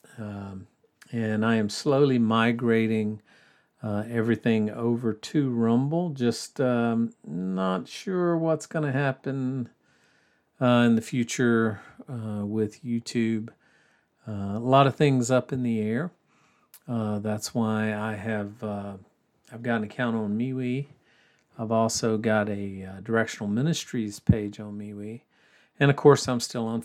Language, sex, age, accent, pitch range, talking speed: English, male, 50-69, American, 105-125 Hz, 140 wpm